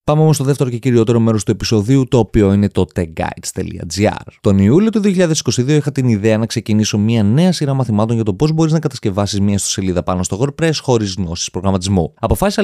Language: Greek